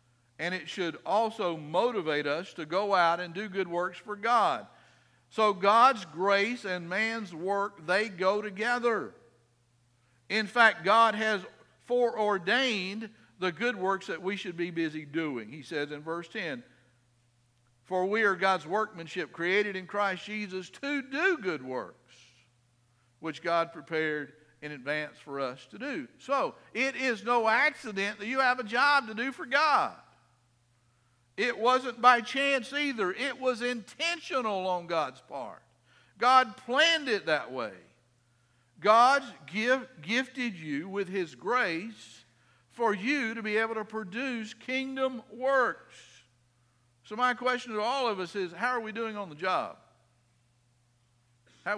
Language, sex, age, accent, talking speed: English, male, 50-69, American, 145 wpm